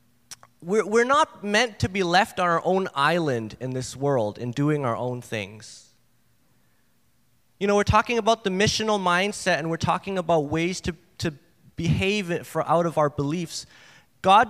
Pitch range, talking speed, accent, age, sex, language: 120-175 Hz, 170 wpm, American, 20-39, male, English